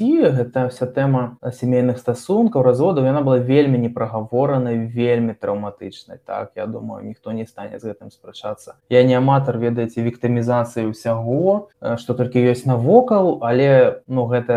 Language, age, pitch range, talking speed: Ukrainian, 20-39, 120-135 Hz, 150 wpm